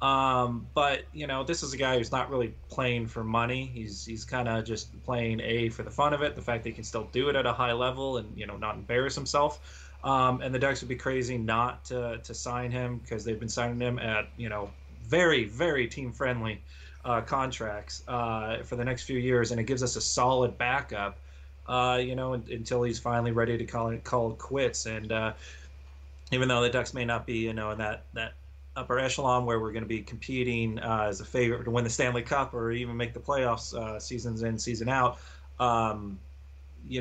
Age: 30-49